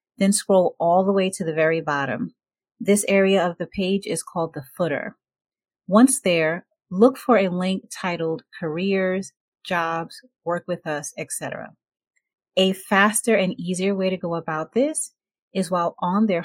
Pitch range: 170-220 Hz